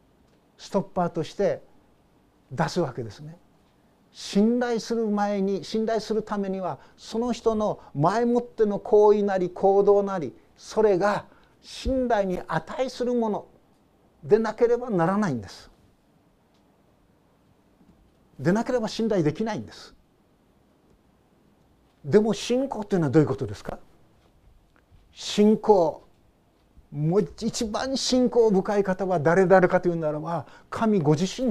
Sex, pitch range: male, 175-220 Hz